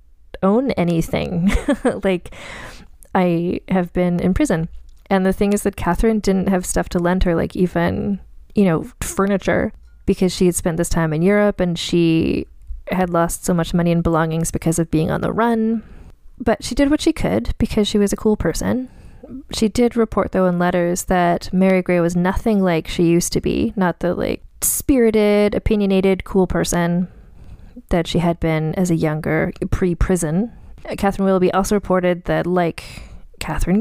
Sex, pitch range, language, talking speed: female, 175-205 Hz, English, 175 wpm